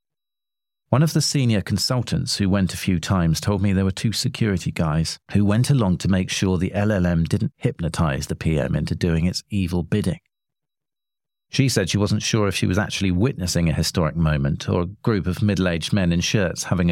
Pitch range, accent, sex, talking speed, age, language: 85-130 Hz, British, male, 200 wpm, 40-59, English